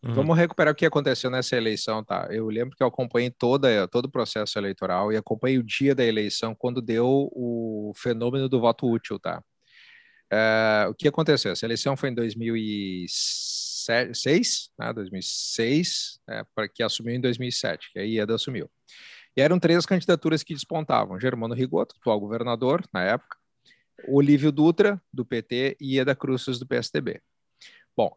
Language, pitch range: Portuguese, 120-160 Hz